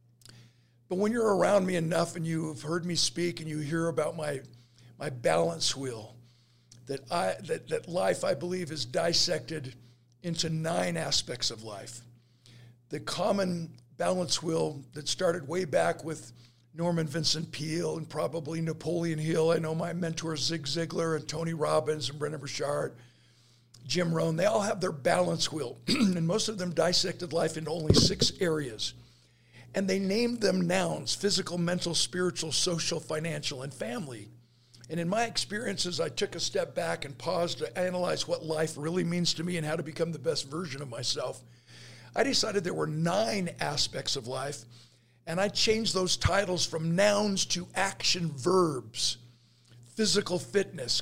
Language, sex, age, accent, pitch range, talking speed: English, male, 50-69, American, 130-180 Hz, 165 wpm